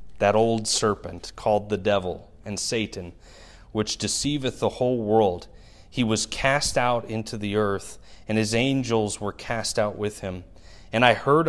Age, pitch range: 30-49, 100-120 Hz